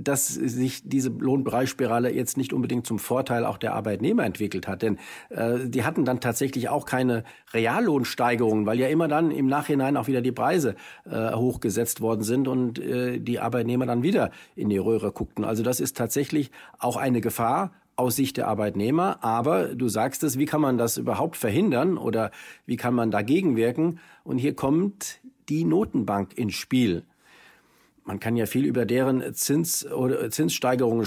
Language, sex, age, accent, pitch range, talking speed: German, male, 50-69, German, 110-135 Hz, 170 wpm